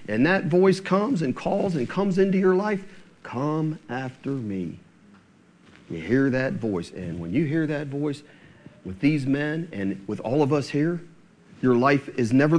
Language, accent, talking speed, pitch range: English, American, 175 wpm, 145-195 Hz